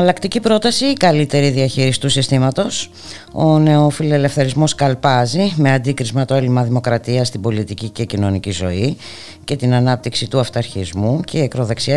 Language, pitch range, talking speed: Greek, 110-145 Hz, 140 wpm